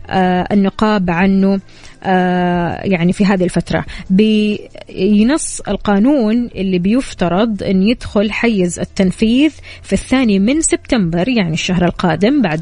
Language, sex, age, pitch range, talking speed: English, female, 20-39, 185-255 Hz, 110 wpm